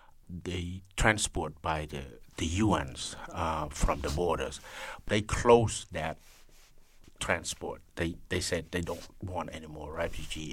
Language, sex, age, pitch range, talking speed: English, male, 60-79, 80-95 Hz, 130 wpm